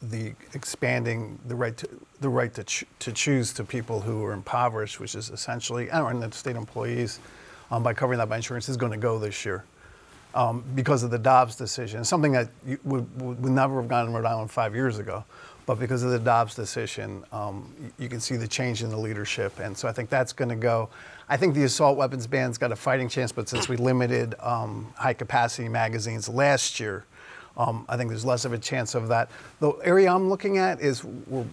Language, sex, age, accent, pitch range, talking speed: English, male, 50-69, American, 115-135 Hz, 220 wpm